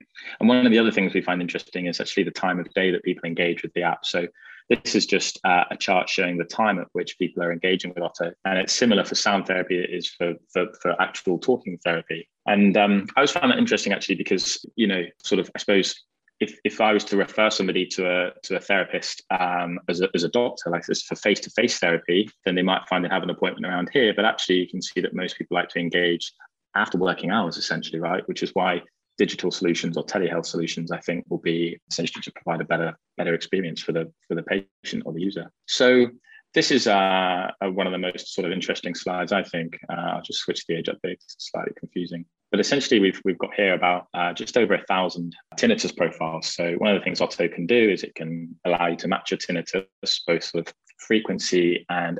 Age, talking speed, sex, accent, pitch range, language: 20-39, 235 wpm, male, British, 85-100 Hz, English